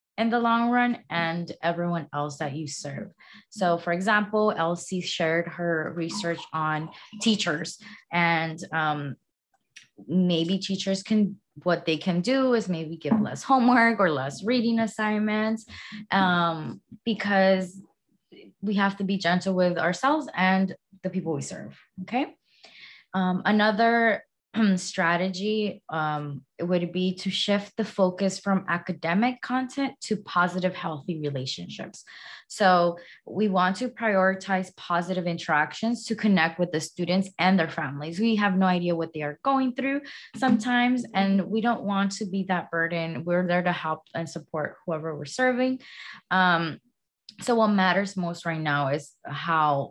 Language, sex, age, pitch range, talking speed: English, female, 20-39, 165-215 Hz, 145 wpm